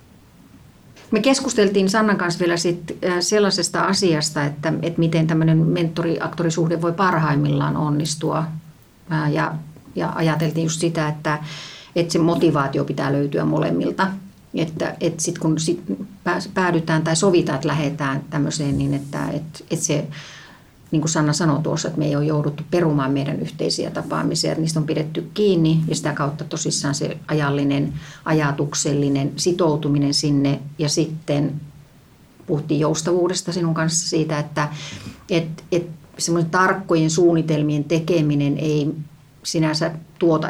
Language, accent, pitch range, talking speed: Finnish, native, 150-170 Hz, 125 wpm